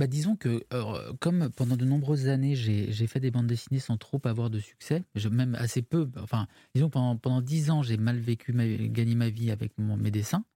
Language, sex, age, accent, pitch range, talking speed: French, male, 20-39, French, 115-140 Hz, 235 wpm